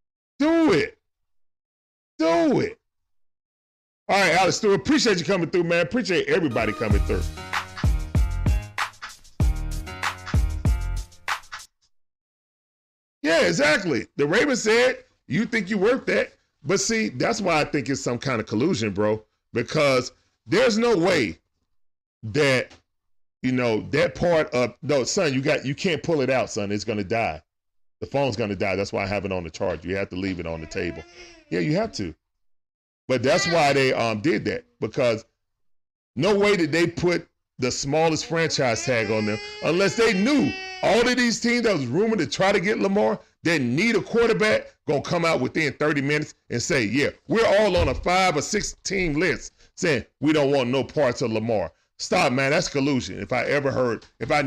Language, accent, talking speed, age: English, American, 180 wpm, 40-59